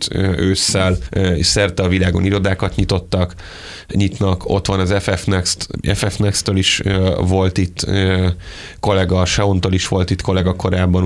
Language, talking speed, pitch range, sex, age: Hungarian, 125 wpm, 90-95 Hz, male, 30-49